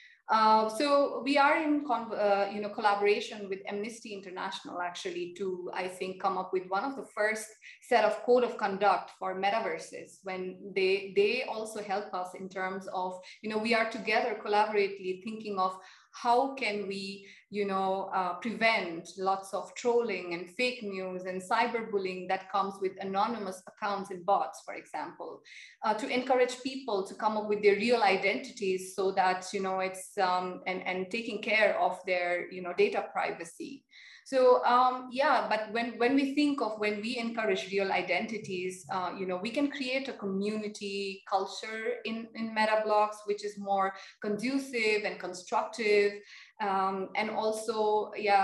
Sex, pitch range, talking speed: female, 190-225 Hz, 165 wpm